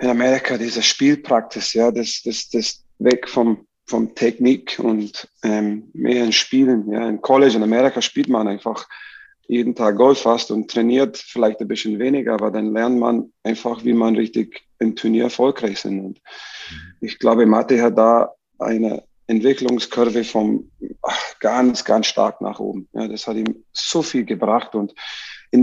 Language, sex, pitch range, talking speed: German, male, 110-125 Hz, 165 wpm